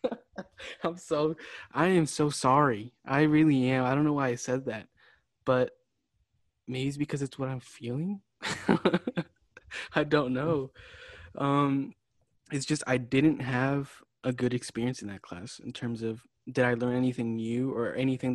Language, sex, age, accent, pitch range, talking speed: English, male, 20-39, American, 115-135 Hz, 160 wpm